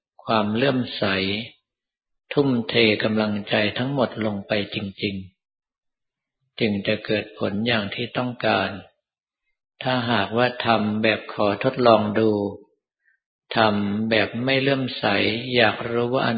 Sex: male